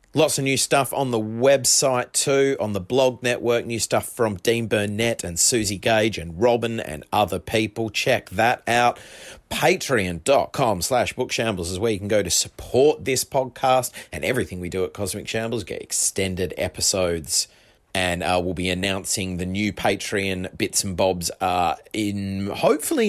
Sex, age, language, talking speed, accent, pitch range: male, 30-49, English, 170 wpm, Australian, 95-125 Hz